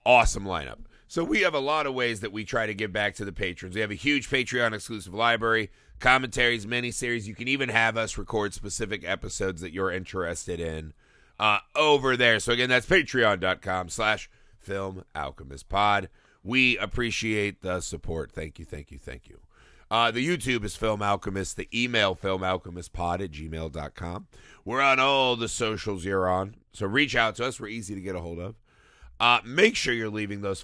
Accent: American